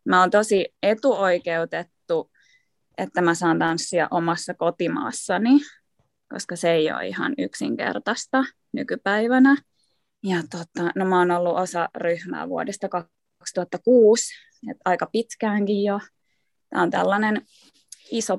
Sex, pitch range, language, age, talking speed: female, 175-220 Hz, Finnish, 20-39, 110 wpm